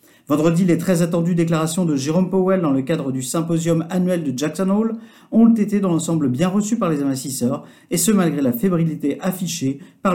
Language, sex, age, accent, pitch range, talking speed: French, male, 50-69, French, 140-195 Hz, 195 wpm